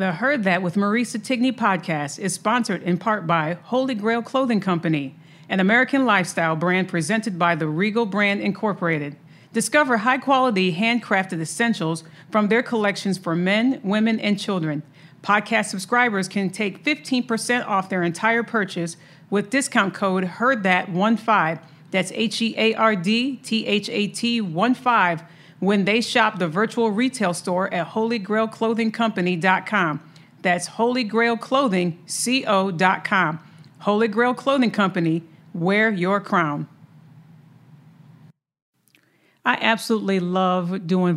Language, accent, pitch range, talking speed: English, American, 175-225 Hz, 115 wpm